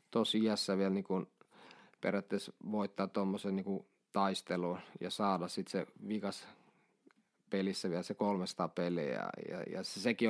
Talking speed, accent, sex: 145 wpm, native, male